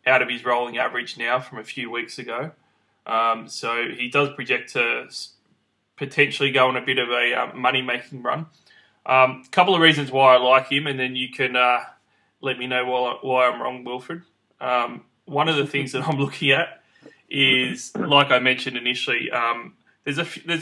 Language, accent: English, Australian